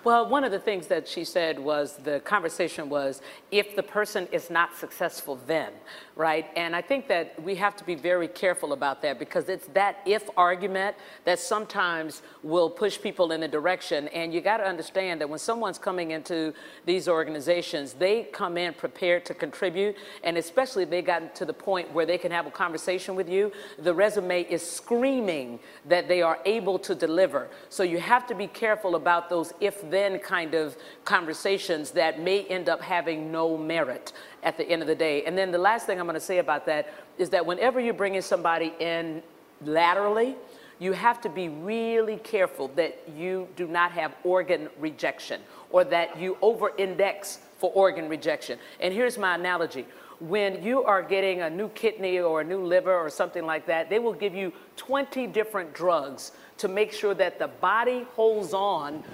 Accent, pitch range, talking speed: American, 165-205 Hz, 190 wpm